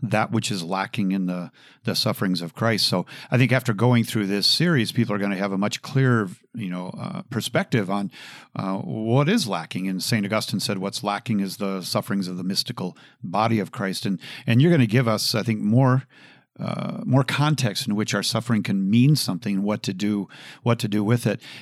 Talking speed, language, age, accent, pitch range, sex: 215 wpm, English, 50-69, American, 105-135 Hz, male